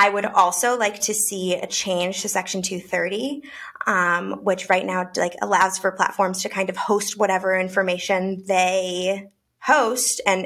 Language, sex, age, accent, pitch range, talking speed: English, female, 20-39, American, 185-215 Hz, 160 wpm